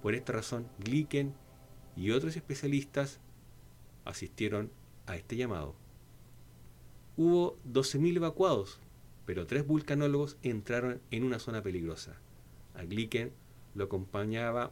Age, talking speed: 40-59, 105 wpm